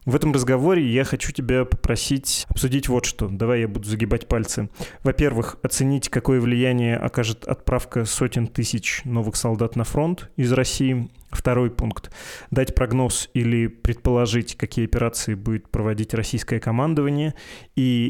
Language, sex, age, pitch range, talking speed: Russian, male, 20-39, 115-130 Hz, 140 wpm